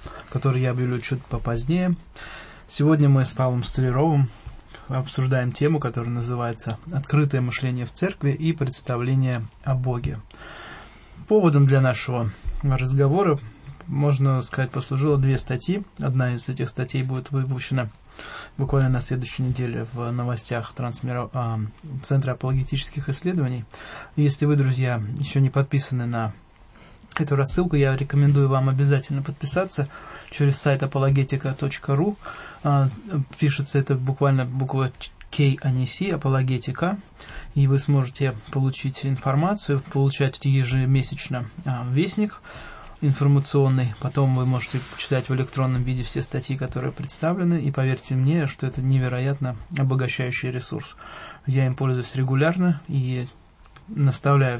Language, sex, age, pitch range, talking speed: English, male, 20-39, 125-140 Hz, 115 wpm